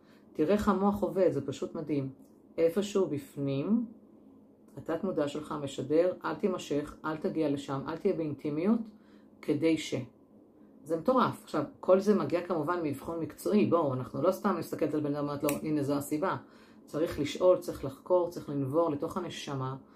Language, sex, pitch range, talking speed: Hebrew, female, 145-175 Hz, 155 wpm